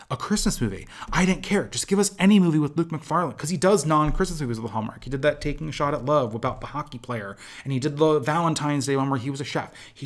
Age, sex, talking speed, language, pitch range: 30-49, male, 275 wpm, English, 125-180 Hz